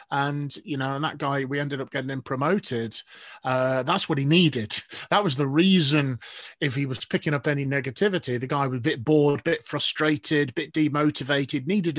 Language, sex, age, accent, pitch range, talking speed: English, male, 30-49, British, 135-165 Hz, 205 wpm